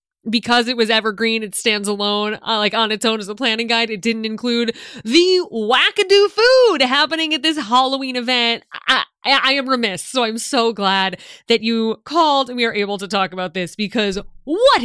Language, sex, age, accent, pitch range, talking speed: English, female, 20-39, American, 215-295 Hz, 200 wpm